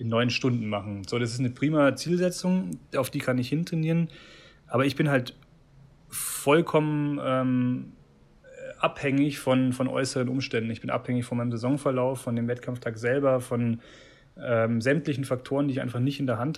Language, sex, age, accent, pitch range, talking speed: German, male, 30-49, German, 125-145 Hz, 170 wpm